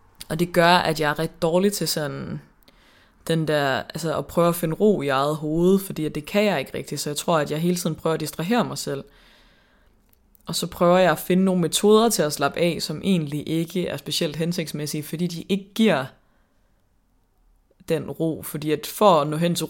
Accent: native